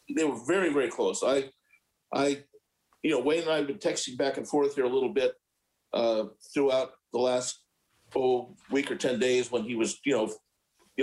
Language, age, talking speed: English, 50-69, 200 wpm